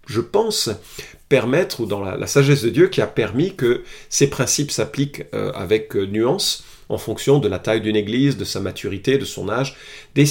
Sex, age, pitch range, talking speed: male, 40-59, 110-140 Hz, 200 wpm